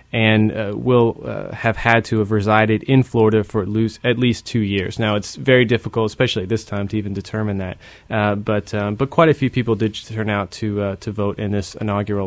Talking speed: 235 wpm